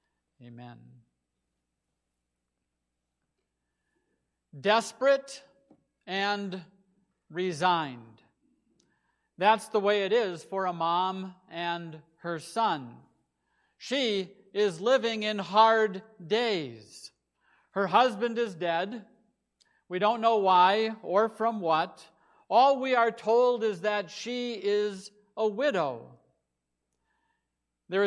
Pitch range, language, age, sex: 170-230 Hz, English, 50-69, male